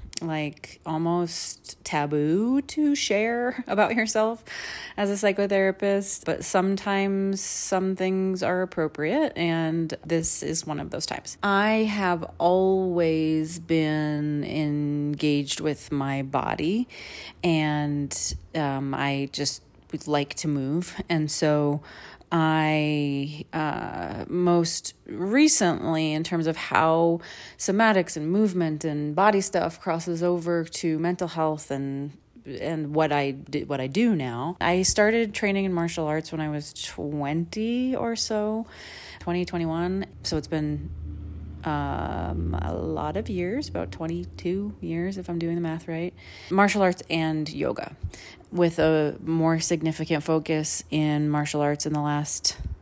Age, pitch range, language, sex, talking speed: 30-49, 145-180 Hz, English, female, 135 wpm